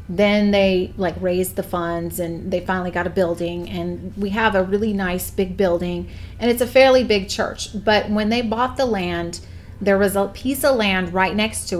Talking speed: 210 wpm